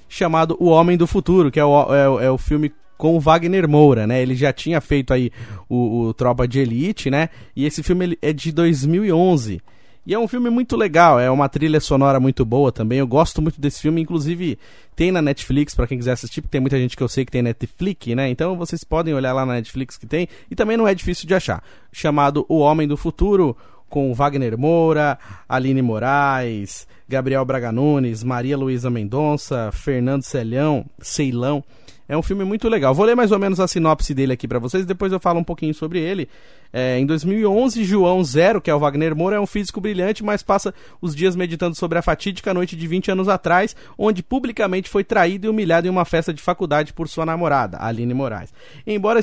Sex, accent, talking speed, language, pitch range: male, Brazilian, 210 wpm, Portuguese, 130-180 Hz